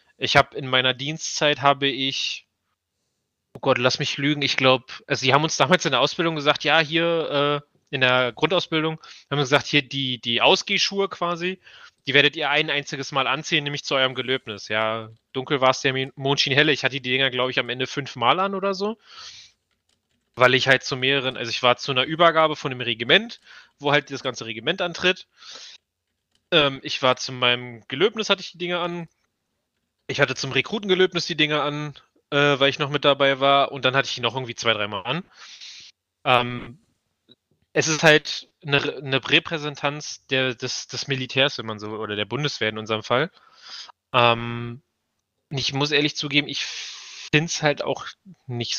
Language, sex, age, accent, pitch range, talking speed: German, male, 30-49, German, 120-150 Hz, 190 wpm